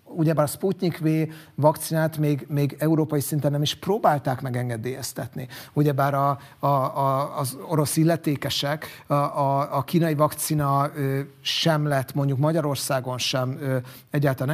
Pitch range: 135-160 Hz